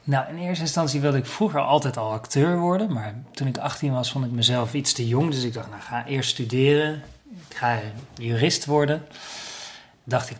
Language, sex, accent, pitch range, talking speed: Dutch, male, Dutch, 115-140 Hz, 210 wpm